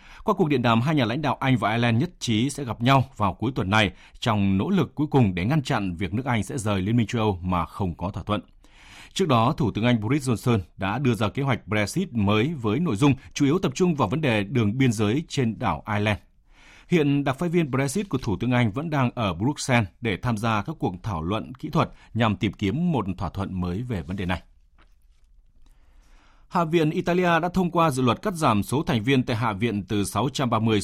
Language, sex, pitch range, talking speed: Vietnamese, male, 100-140 Hz, 240 wpm